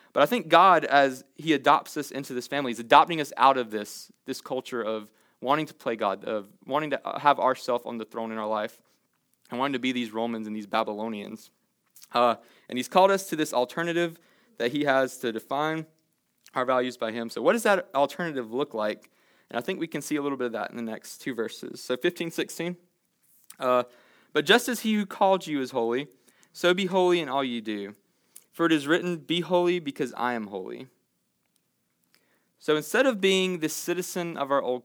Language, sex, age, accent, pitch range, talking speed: English, male, 20-39, American, 120-160 Hz, 210 wpm